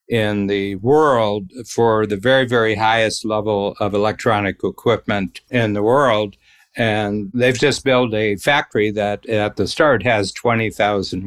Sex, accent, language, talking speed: male, American, English, 145 wpm